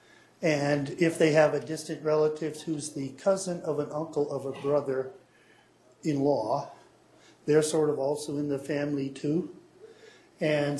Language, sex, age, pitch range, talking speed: English, male, 50-69, 140-175 Hz, 140 wpm